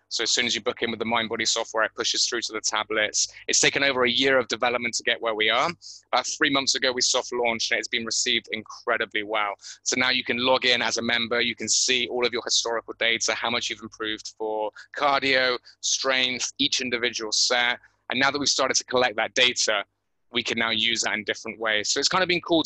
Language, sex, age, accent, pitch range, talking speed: English, male, 20-39, British, 115-130 Hz, 245 wpm